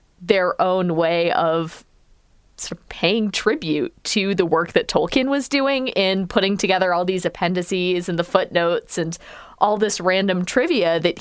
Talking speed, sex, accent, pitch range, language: 160 wpm, female, American, 170-220 Hz, English